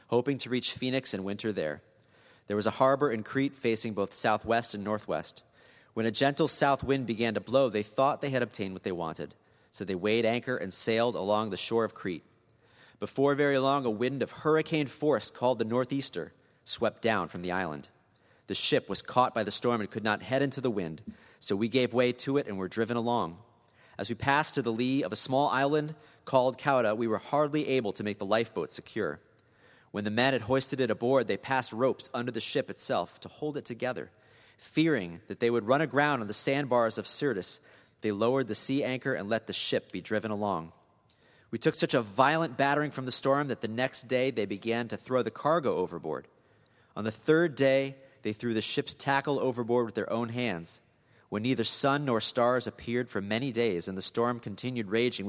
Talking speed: 210 wpm